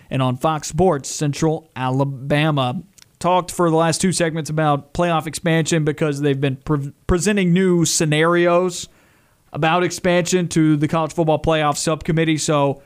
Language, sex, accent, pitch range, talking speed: English, male, American, 140-170 Hz, 140 wpm